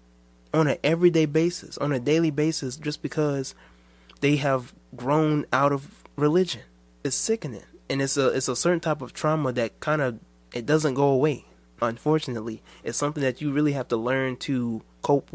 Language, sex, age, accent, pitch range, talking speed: English, male, 20-39, American, 110-140 Hz, 170 wpm